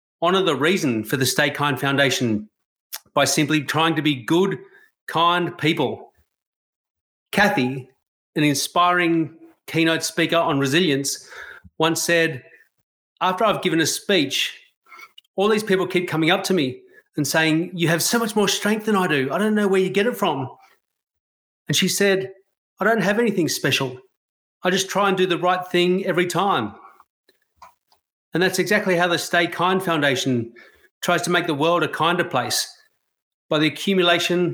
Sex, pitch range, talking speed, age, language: male, 145-180 Hz, 165 wpm, 40-59, English